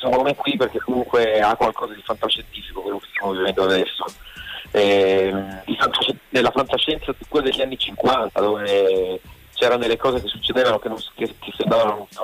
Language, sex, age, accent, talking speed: Italian, male, 30-49, native, 175 wpm